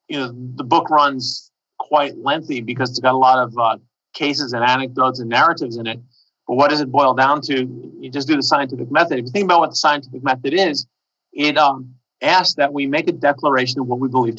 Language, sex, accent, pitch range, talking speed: English, male, American, 125-145 Hz, 230 wpm